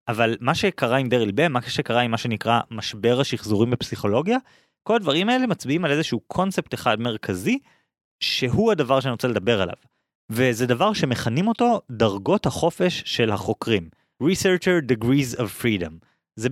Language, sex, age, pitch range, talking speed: Hebrew, male, 20-39, 115-175 Hz, 150 wpm